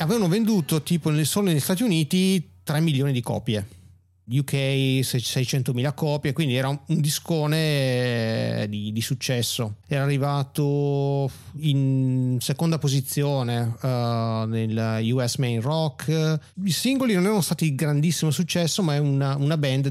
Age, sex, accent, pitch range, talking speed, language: 40-59, male, native, 125-160 Hz, 135 wpm, Italian